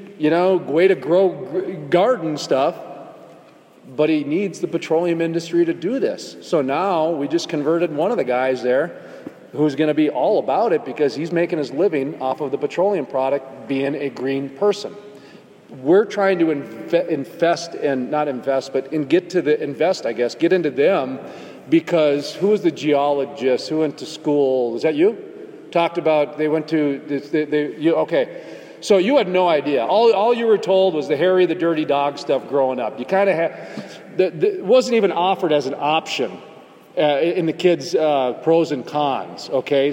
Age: 40-59